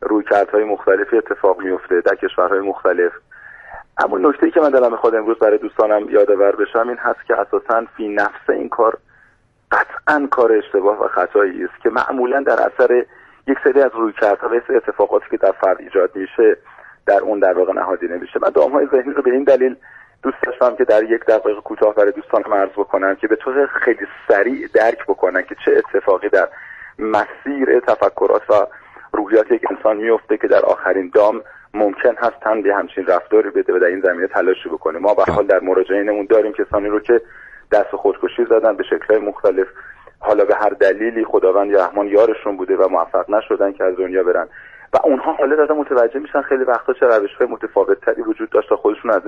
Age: 40-59